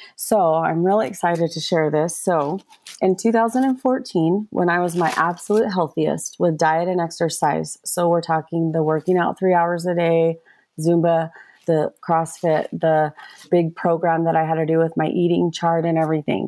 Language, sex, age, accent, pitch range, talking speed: English, female, 30-49, American, 155-175 Hz, 170 wpm